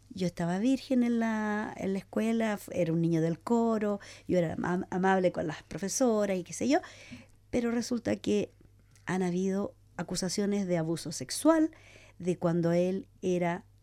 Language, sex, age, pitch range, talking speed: English, female, 50-69, 155-210 Hz, 155 wpm